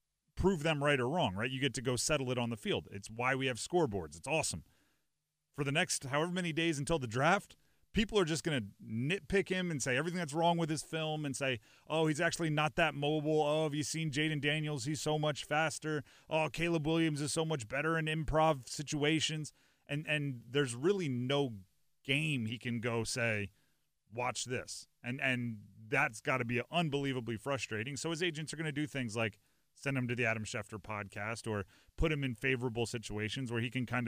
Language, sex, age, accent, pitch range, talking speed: English, male, 30-49, American, 110-150 Hz, 210 wpm